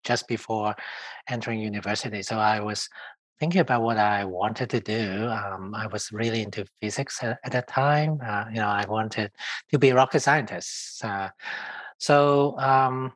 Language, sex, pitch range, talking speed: English, male, 110-145 Hz, 170 wpm